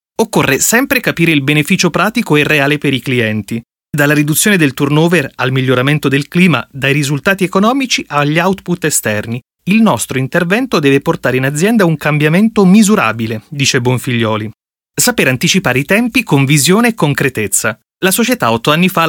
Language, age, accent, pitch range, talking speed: Italian, 30-49, native, 130-180 Hz, 160 wpm